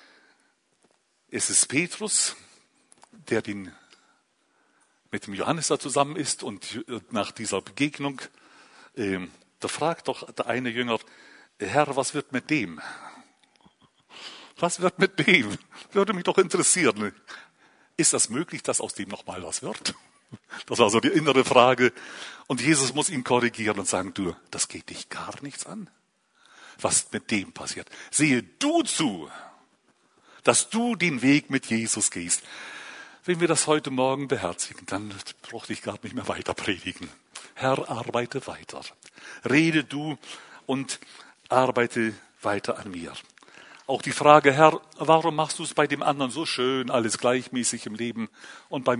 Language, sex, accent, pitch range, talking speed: German, male, German, 120-160 Hz, 150 wpm